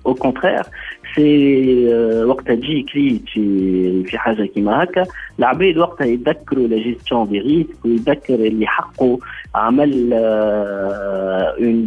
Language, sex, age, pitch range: Arabic, male, 50-69, 110-140 Hz